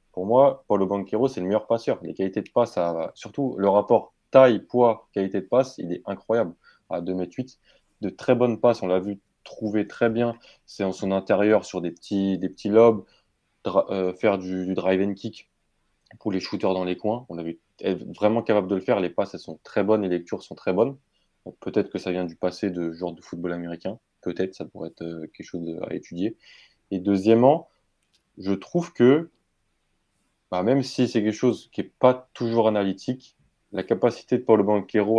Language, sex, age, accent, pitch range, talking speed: French, male, 20-39, French, 90-110 Hz, 205 wpm